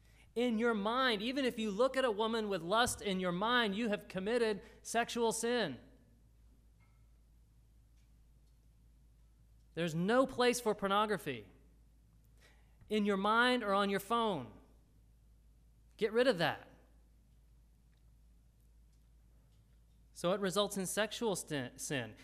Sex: male